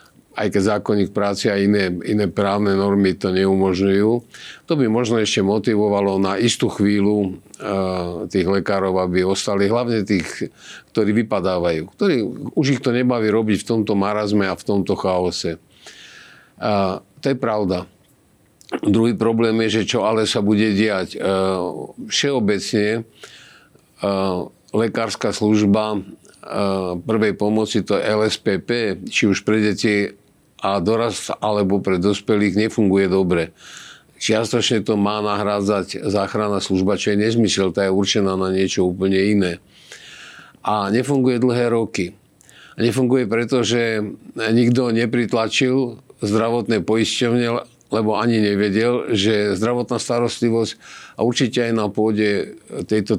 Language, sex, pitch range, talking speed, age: Slovak, male, 100-115 Hz, 130 wpm, 50-69